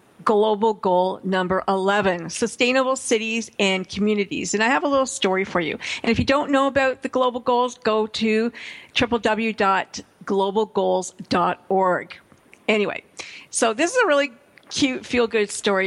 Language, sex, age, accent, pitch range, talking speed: English, female, 50-69, American, 200-255 Hz, 145 wpm